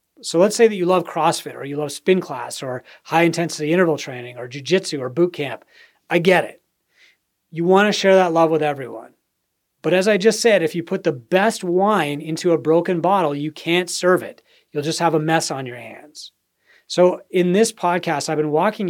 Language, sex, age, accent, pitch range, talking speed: English, male, 30-49, American, 150-190 Hz, 210 wpm